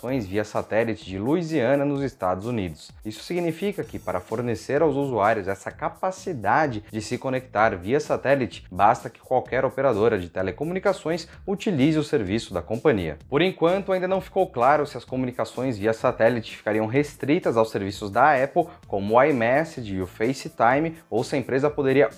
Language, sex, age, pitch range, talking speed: Portuguese, male, 20-39, 110-155 Hz, 160 wpm